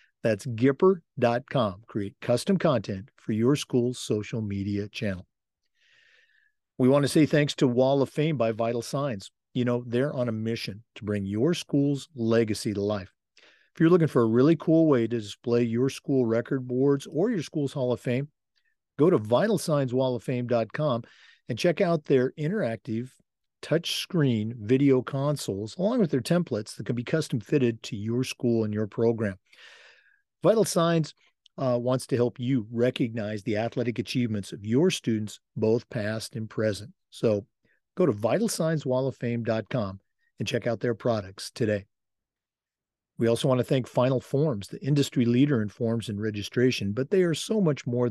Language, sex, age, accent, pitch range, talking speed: English, male, 50-69, American, 110-145 Hz, 160 wpm